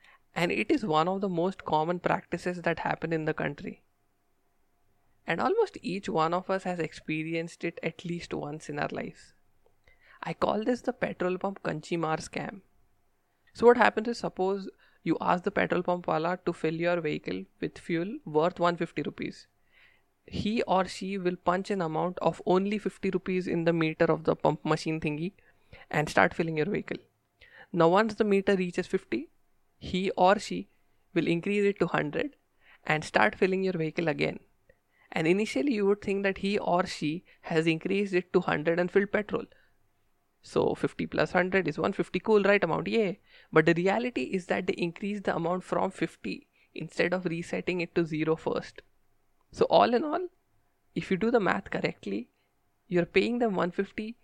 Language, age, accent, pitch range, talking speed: English, 20-39, Indian, 165-195 Hz, 180 wpm